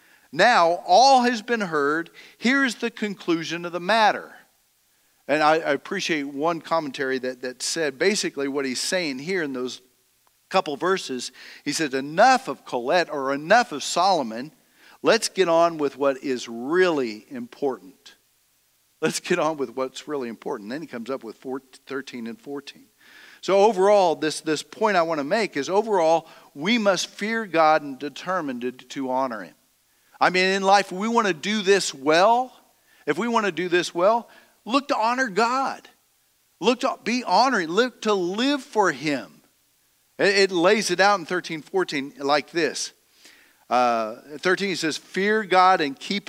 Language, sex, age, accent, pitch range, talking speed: English, male, 50-69, American, 145-210 Hz, 165 wpm